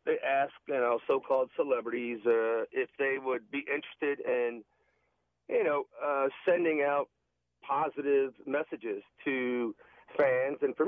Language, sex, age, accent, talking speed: English, male, 40-59, American, 130 wpm